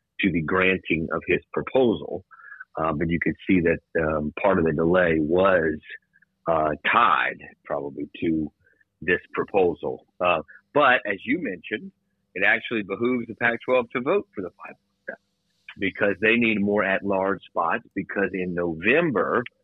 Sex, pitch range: male, 95-115 Hz